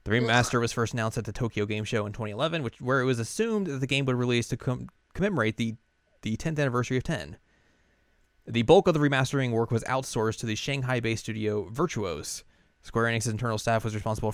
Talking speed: 210 wpm